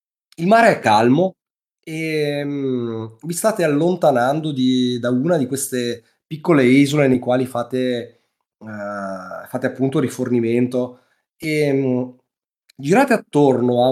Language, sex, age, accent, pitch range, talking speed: Italian, male, 30-49, native, 120-145 Hz, 105 wpm